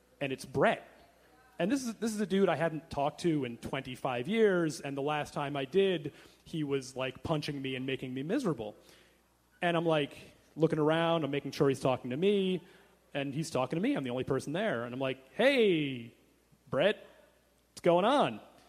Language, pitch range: English, 150-195 Hz